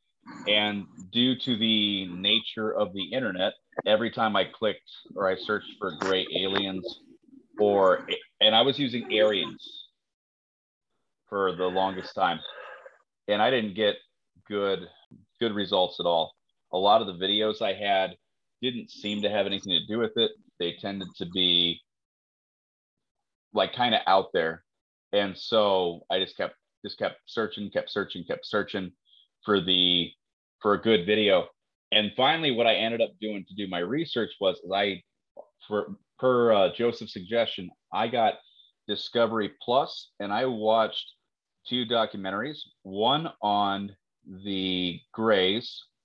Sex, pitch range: male, 95-115 Hz